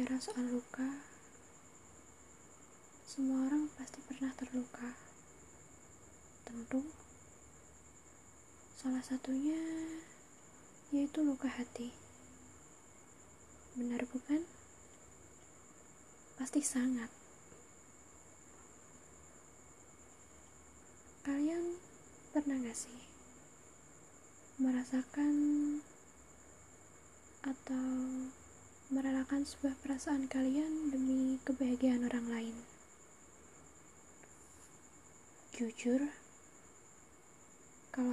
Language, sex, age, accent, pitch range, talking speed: Indonesian, female, 20-39, native, 235-280 Hz, 50 wpm